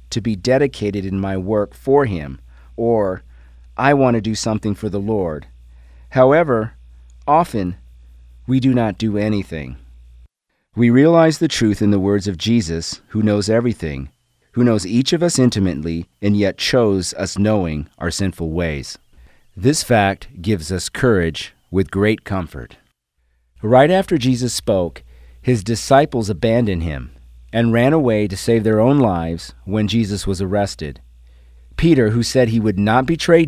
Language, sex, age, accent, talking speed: English, male, 40-59, American, 150 wpm